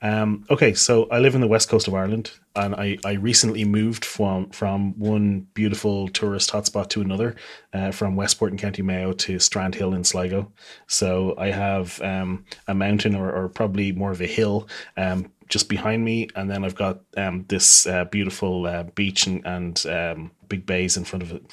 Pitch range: 95-105 Hz